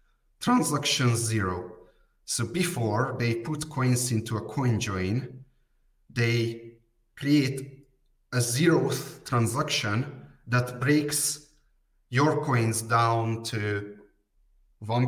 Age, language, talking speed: 30-49, English, 90 wpm